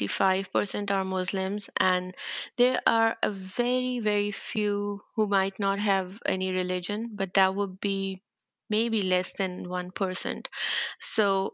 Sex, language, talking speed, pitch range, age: female, English, 130 wpm, 190-215 Hz, 30-49